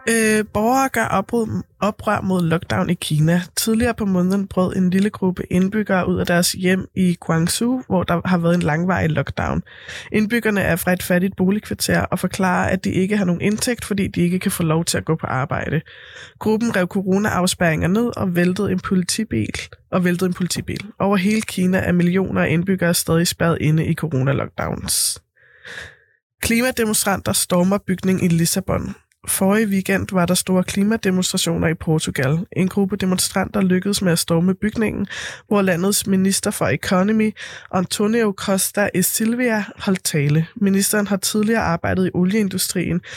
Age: 20-39